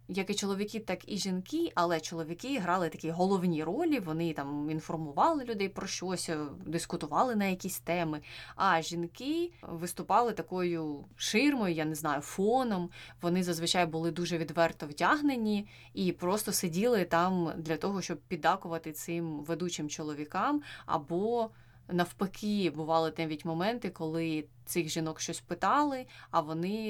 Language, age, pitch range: Ukrainian, 20-39, 160-195 Hz